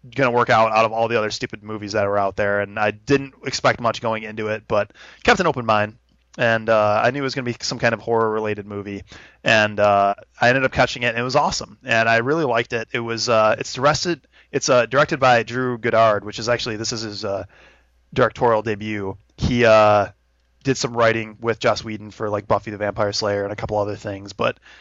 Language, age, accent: English, 20-39, American